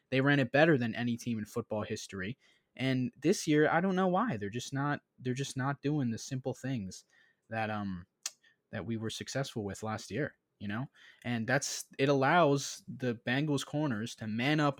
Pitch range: 115-140 Hz